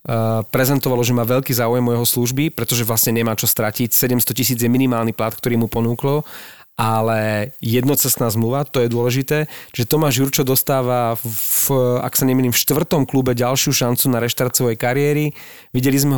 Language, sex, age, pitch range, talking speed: Slovak, male, 30-49, 115-130 Hz, 165 wpm